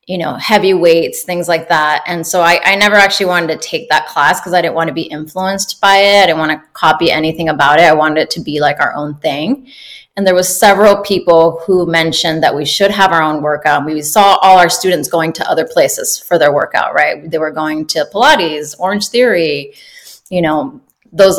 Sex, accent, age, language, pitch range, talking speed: female, American, 20-39, English, 160-195 Hz, 225 wpm